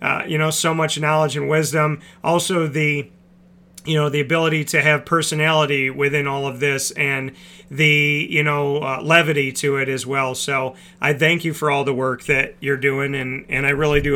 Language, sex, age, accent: English, male, 40-59, American